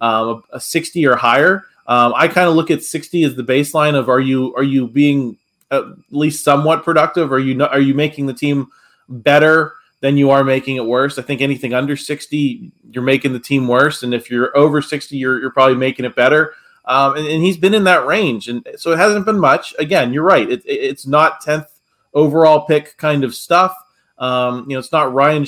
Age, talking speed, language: 20-39, 225 wpm, English